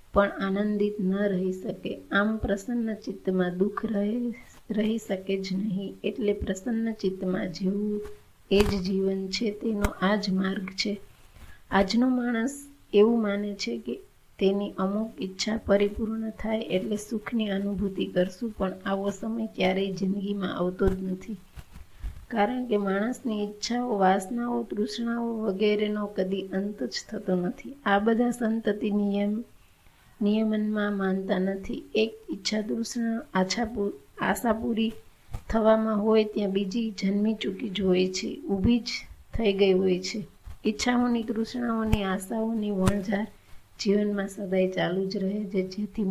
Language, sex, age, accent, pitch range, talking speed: Gujarati, female, 30-49, native, 190-220 Hz, 90 wpm